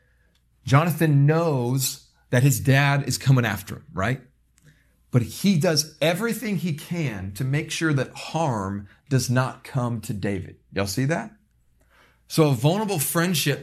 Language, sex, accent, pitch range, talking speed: English, male, American, 110-155 Hz, 145 wpm